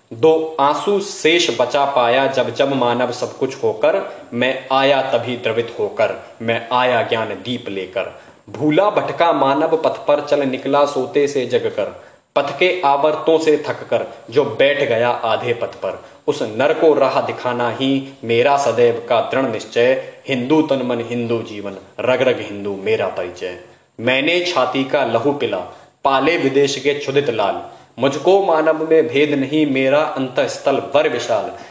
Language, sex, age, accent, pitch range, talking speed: Hindi, male, 20-39, native, 120-155 Hz, 150 wpm